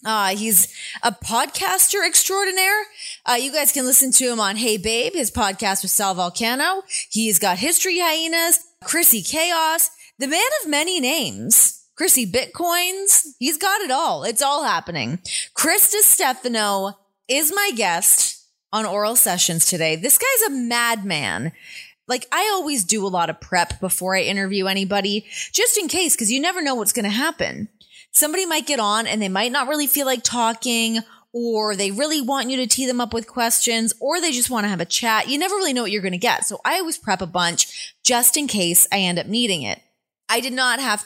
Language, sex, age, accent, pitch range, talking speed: English, female, 20-39, American, 200-295 Hz, 195 wpm